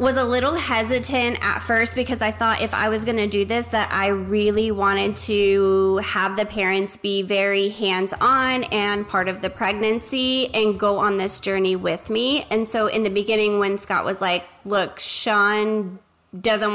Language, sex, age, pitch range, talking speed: English, female, 20-39, 200-235 Hz, 185 wpm